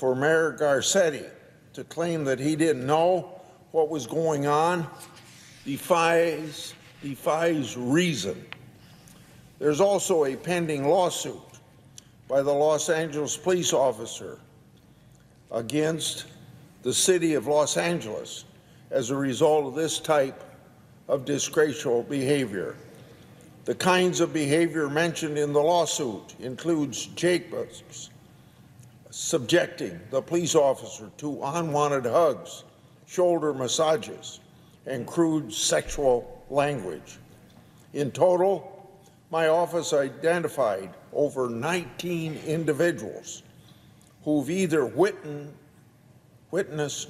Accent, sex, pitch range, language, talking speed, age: American, male, 145-170 Hz, English, 95 wpm, 50-69